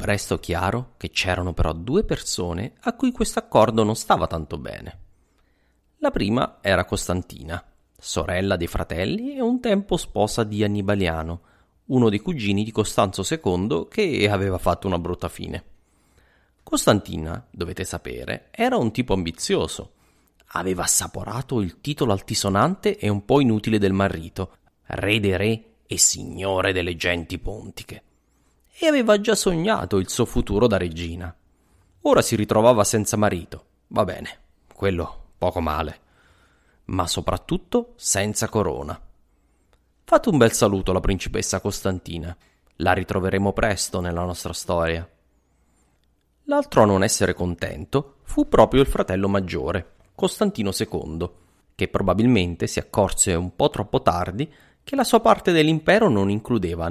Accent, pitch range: Italian, 85-110 Hz